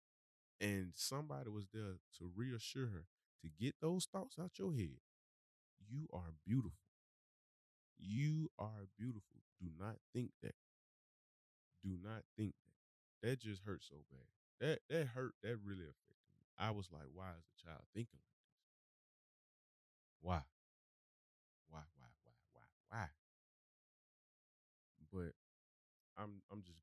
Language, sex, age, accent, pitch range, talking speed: English, male, 20-39, American, 80-105 Hz, 135 wpm